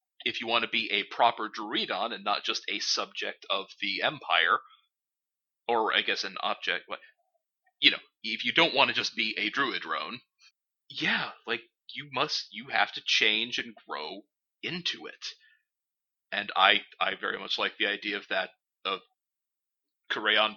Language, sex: English, male